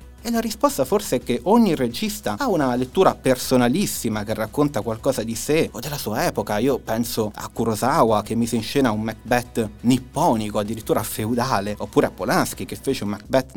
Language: Italian